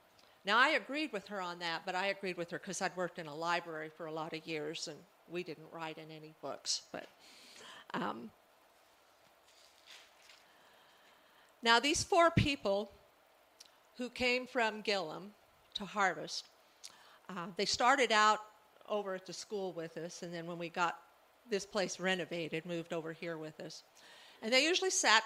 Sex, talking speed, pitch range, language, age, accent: female, 165 wpm, 180-245 Hz, English, 50-69, American